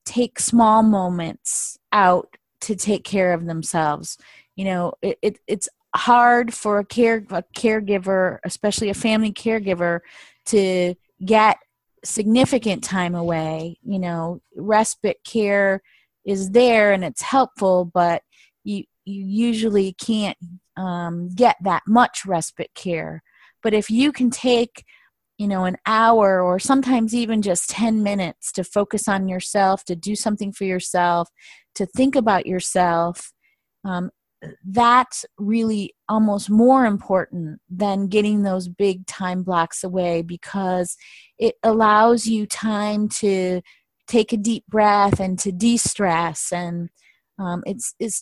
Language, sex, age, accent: English, female, 30-49, American